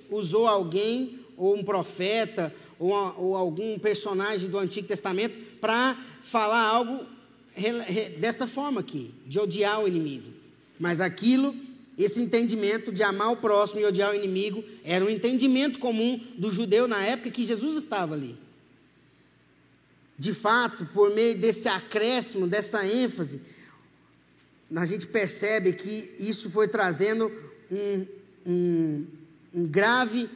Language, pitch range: Portuguese, 185-225 Hz